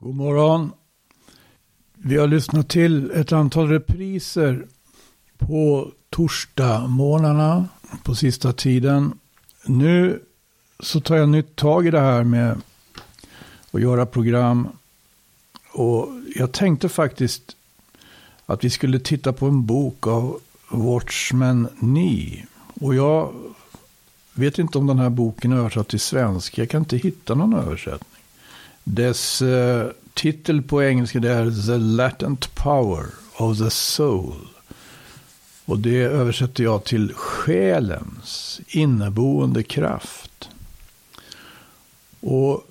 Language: Swedish